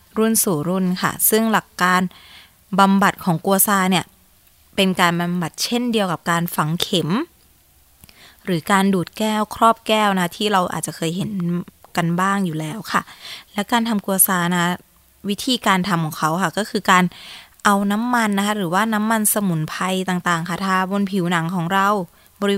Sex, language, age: female, Thai, 20-39